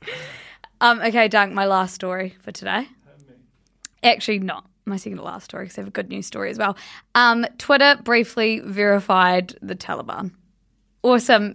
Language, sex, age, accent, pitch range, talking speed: English, female, 20-39, Australian, 195-240 Hz, 160 wpm